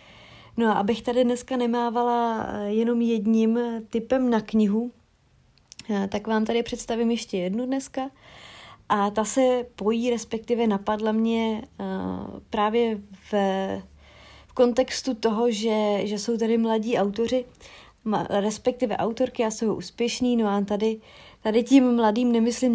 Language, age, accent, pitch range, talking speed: Czech, 30-49, native, 210-235 Hz, 125 wpm